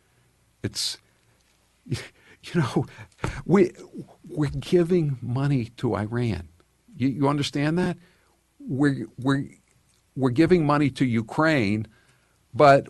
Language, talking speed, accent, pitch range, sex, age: English, 100 wpm, American, 115-150 Hz, male, 60-79